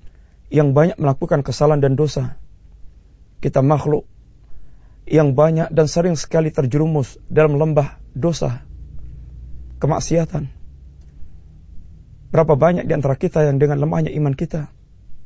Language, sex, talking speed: Malay, male, 110 wpm